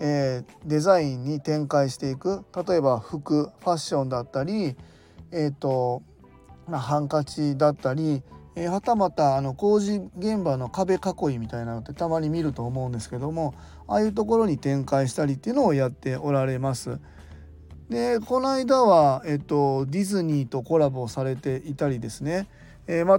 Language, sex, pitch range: Japanese, male, 130-180 Hz